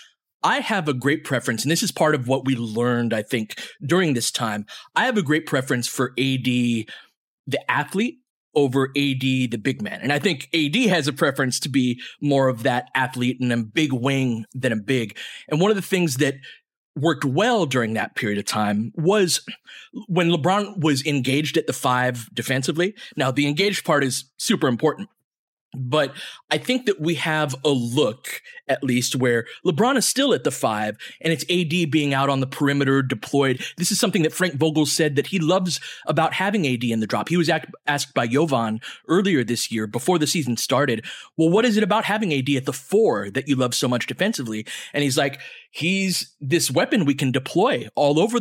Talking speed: 200 wpm